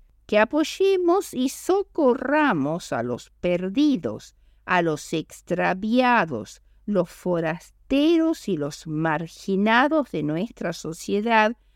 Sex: female